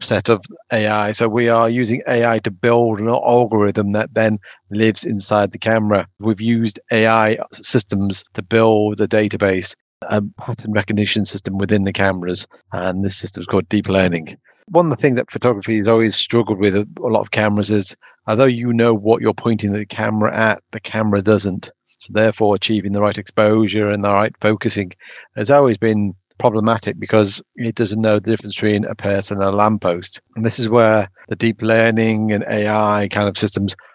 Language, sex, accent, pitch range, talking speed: English, male, British, 100-115 Hz, 185 wpm